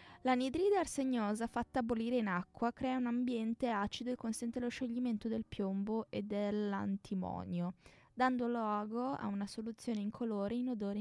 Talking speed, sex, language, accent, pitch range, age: 145 wpm, female, Italian, native, 200-240 Hz, 20-39